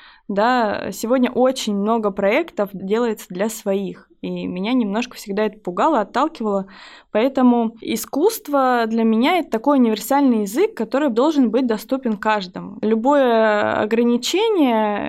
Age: 20-39